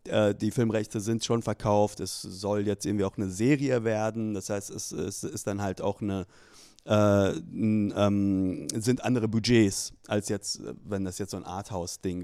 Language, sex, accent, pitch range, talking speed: German, male, German, 110-145 Hz, 155 wpm